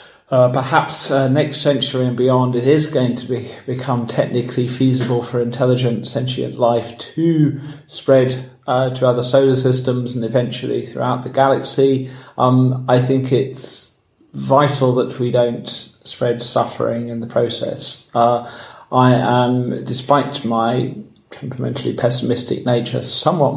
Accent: British